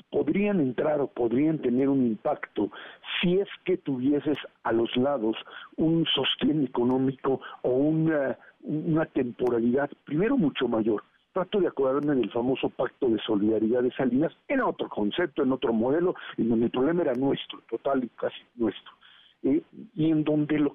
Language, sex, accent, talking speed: Spanish, male, Mexican, 160 wpm